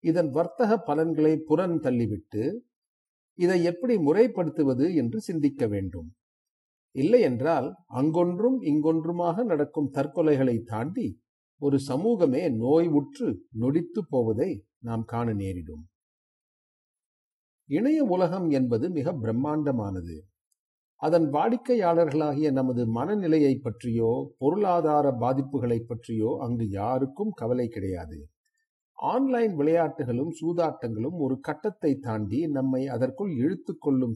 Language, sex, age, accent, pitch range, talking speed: Tamil, male, 50-69, native, 115-165 Hz, 90 wpm